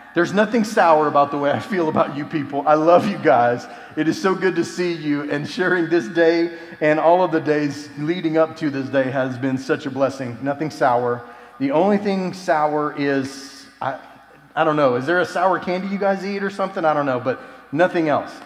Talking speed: 220 wpm